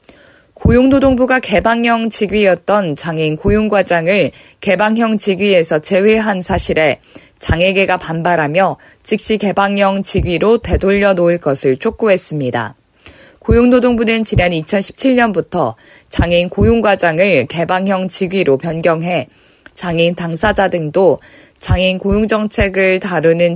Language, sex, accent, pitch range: Korean, female, native, 170-215 Hz